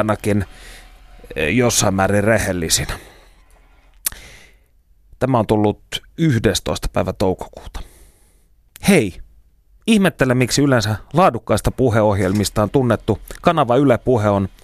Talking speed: 80 wpm